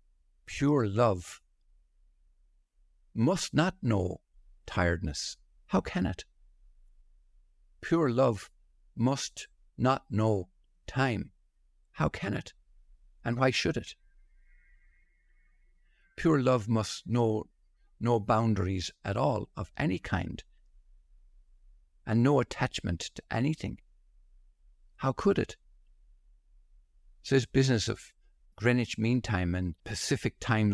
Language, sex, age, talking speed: English, male, 60-79, 100 wpm